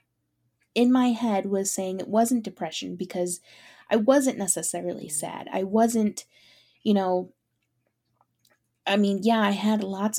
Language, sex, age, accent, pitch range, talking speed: English, female, 20-39, American, 175-230 Hz, 135 wpm